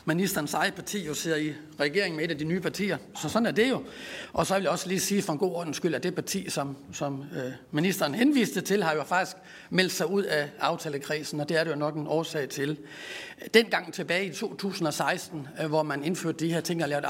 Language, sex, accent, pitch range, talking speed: Danish, male, native, 155-195 Hz, 240 wpm